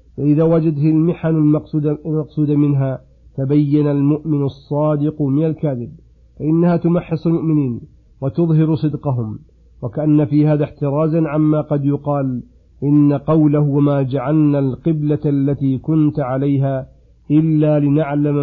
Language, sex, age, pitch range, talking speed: Arabic, male, 50-69, 135-155 Hz, 105 wpm